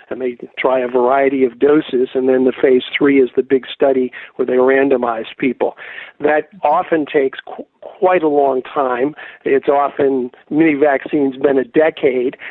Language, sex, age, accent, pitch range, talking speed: English, male, 50-69, American, 130-150 Hz, 170 wpm